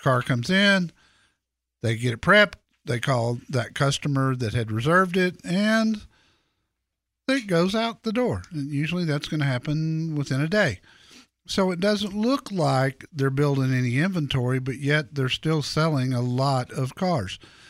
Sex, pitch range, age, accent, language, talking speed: male, 130-170 Hz, 50-69, American, English, 165 wpm